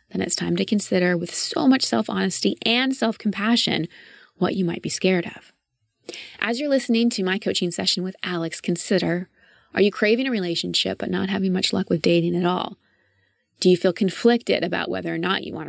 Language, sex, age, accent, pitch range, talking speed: English, female, 20-39, American, 175-210 Hz, 195 wpm